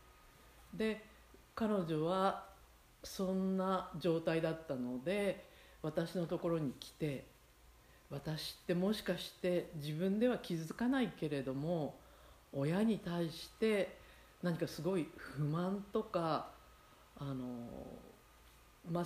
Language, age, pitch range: Japanese, 50-69, 140-210 Hz